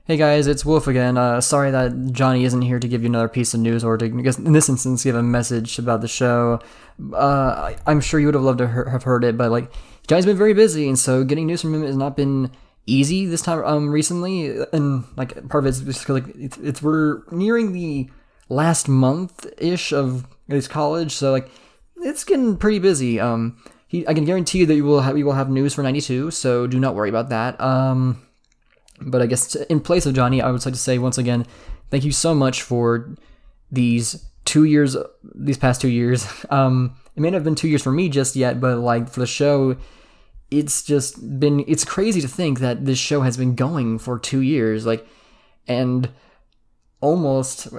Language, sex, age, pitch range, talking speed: English, male, 20-39, 125-150 Hz, 215 wpm